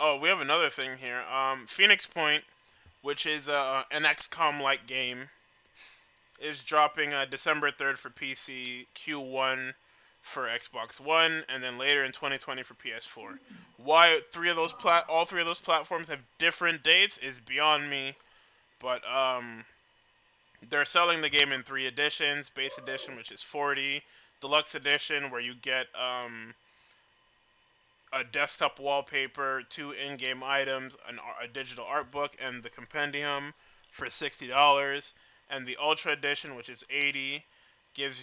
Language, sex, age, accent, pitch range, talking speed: English, male, 20-39, American, 130-150 Hz, 150 wpm